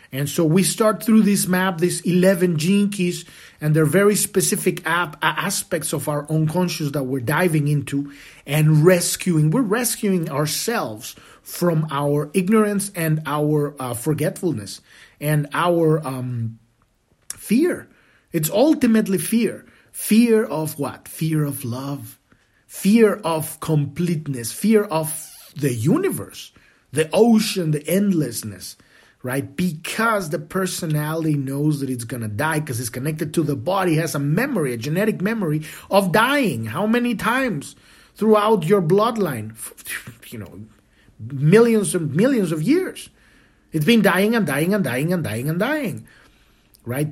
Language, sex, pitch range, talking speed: English, male, 145-200 Hz, 135 wpm